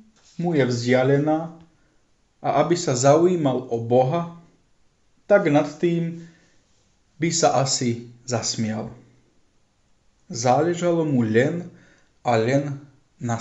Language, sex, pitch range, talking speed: Slovak, male, 115-155 Hz, 100 wpm